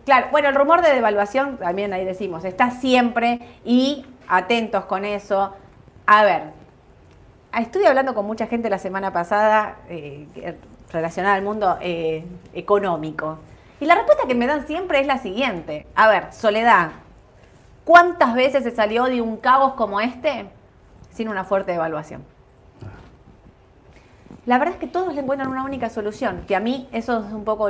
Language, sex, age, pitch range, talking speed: Spanish, female, 30-49, 175-235 Hz, 160 wpm